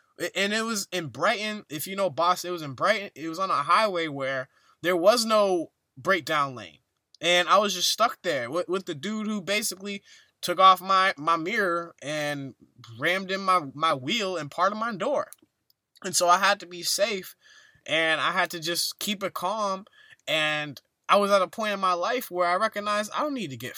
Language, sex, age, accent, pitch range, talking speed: English, male, 20-39, American, 165-215 Hz, 210 wpm